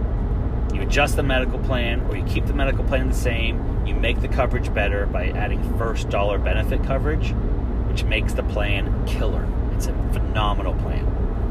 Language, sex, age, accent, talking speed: English, male, 30-49, American, 165 wpm